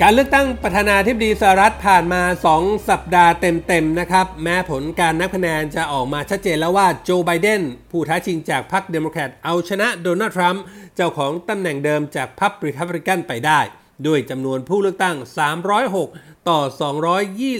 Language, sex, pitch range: Thai, male, 165-210 Hz